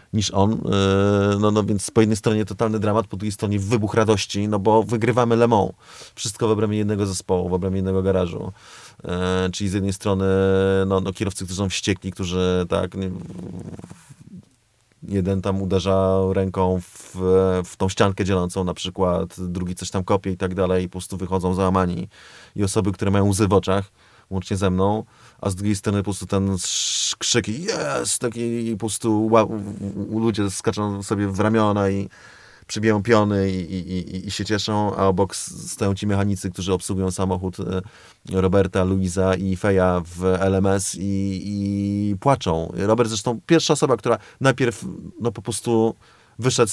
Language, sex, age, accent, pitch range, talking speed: Polish, male, 30-49, native, 95-110 Hz, 155 wpm